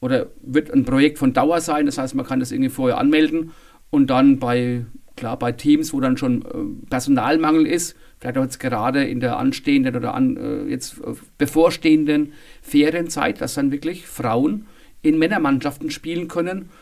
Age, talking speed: 40-59, 165 wpm